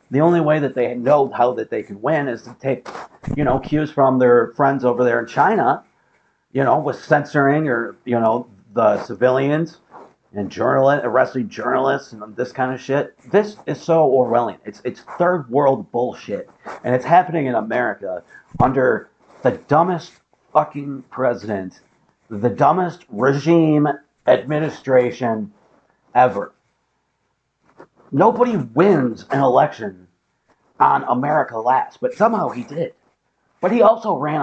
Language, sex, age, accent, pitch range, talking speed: English, male, 50-69, American, 125-155 Hz, 140 wpm